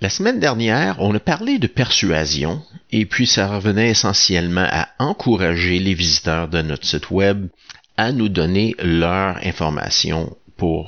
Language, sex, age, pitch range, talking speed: French, male, 50-69, 85-105 Hz, 150 wpm